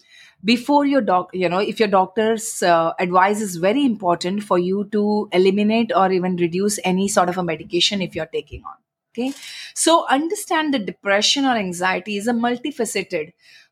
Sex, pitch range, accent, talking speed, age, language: female, 185-245 Hz, Indian, 170 wpm, 30-49, English